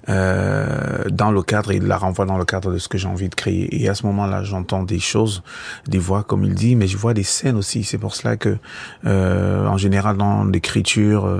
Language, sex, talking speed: French, male, 235 wpm